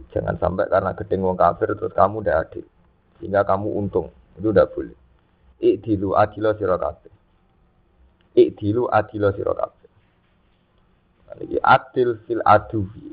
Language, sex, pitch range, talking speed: Indonesian, male, 90-105 Hz, 130 wpm